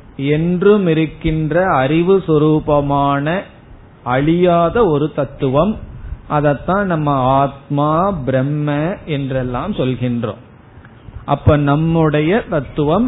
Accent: native